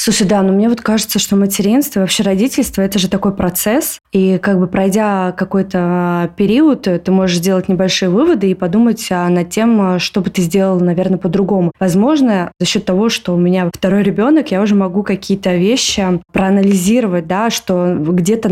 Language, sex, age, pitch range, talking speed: Russian, female, 20-39, 185-215 Hz, 170 wpm